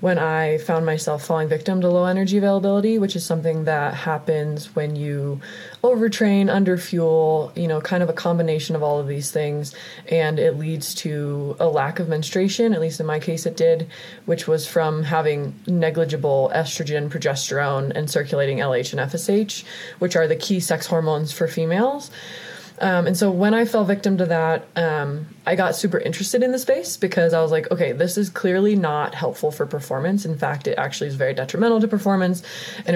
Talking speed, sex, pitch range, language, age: 190 wpm, female, 155-190 Hz, English, 20-39